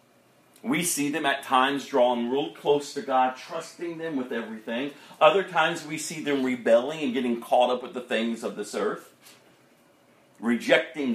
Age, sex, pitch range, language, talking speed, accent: 40-59, male, 130-195 Hz, English, 165 wpm, American